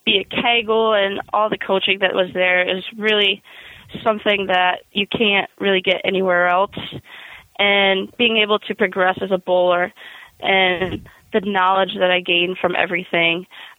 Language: English